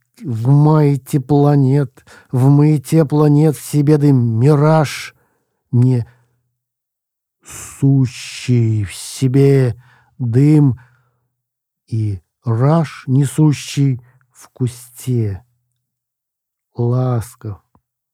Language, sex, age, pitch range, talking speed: Russian, male, 50-69, 115-140 Hz, 60 wpm